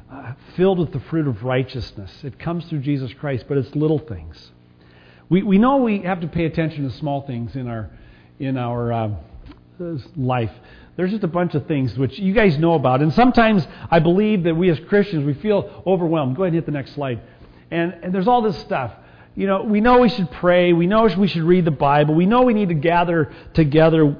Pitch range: 120-175 Hz